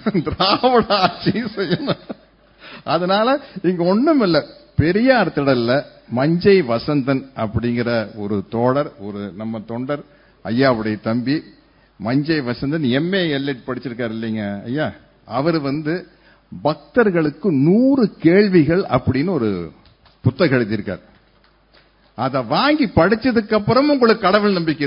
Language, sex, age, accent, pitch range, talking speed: Tamil, male, 50-69, native, 130-200 Hz, 100 wpm